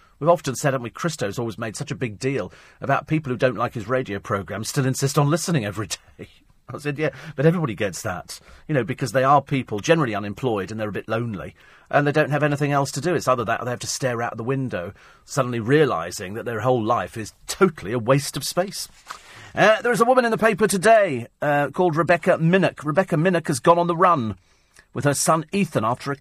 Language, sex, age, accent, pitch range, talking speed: English, male, 40-59, British, 115-155 Hz, 235 wpm